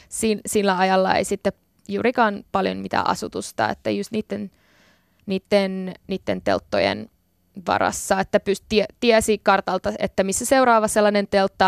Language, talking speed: Finnish, 130 wpm